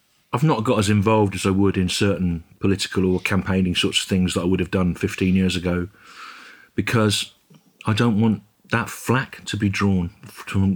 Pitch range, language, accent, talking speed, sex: 90-105 Hz, English, British, 190 wpm, male